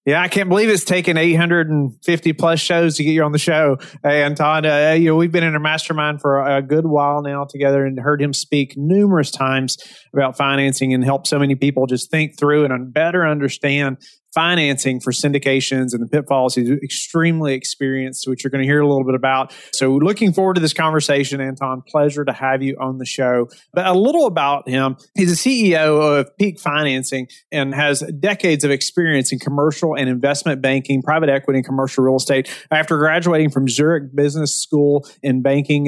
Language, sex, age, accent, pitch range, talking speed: English, male, 30-49, American, 135-155 Hz, 195 wpm